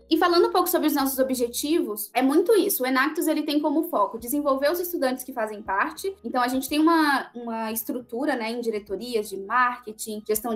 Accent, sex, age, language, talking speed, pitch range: Brazilian, female, 10-29, Portuguese, 200 wpm, 230-310 Hz